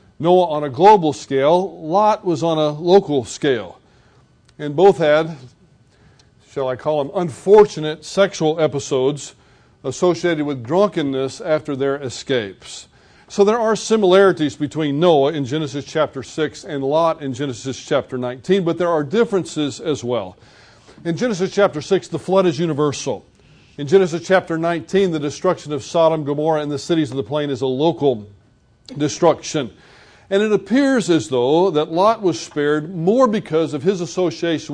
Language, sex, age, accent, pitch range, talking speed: English, male, 40-59, American, 140-175 Hz, 155 wpm